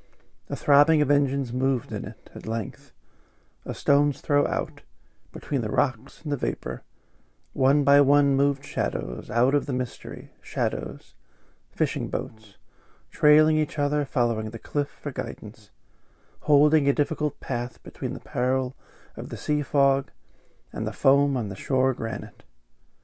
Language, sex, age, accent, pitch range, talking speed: English, male, 40-59, American, 115-145 Hz, 150 wpm